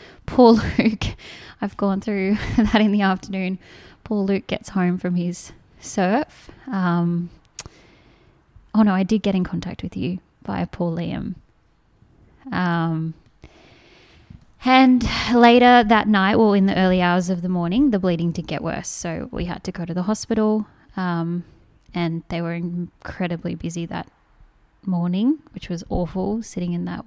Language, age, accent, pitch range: English, 10-29, Australian, 170-205 Hz